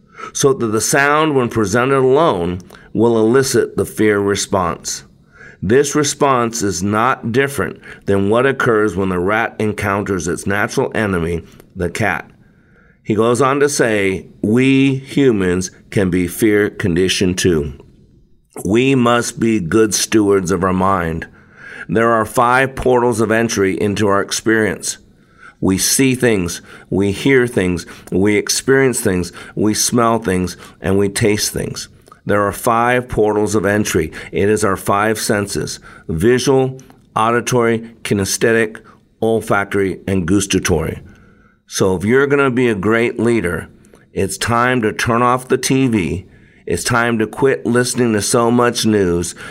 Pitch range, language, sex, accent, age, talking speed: 100-120 Hz, English, male, American, 50-69, 140 wpm